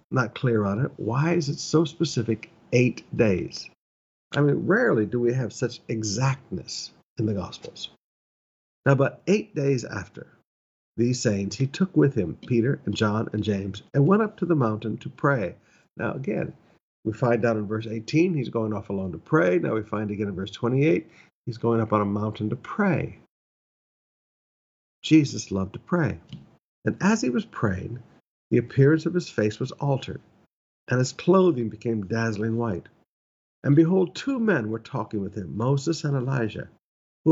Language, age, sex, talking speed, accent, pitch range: English, 50-69, male, 175 wpm, American, 110-160 Hz